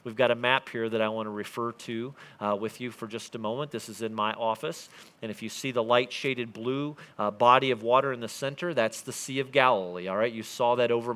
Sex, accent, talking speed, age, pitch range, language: male, American, 260 wpm, 40-59, 120-155 Hz, English